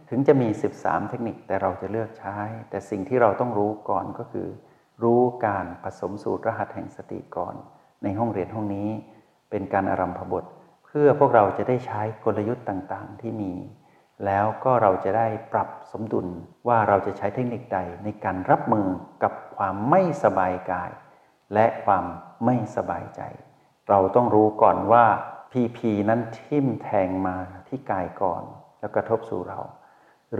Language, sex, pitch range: Thai, male, 100-120 Hz